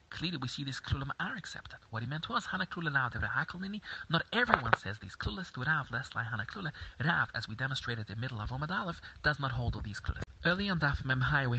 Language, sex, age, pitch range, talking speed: English, male, 30-49, 115-145 Hz, 225 wpm